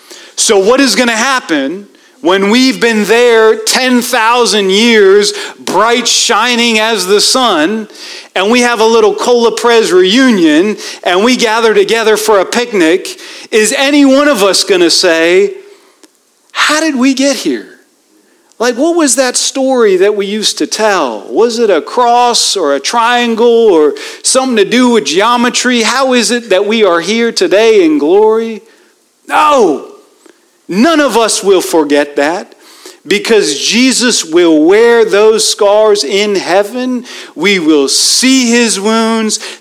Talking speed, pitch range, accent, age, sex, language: 150 wpm, 205-265 Hz, American, 40-59, male, English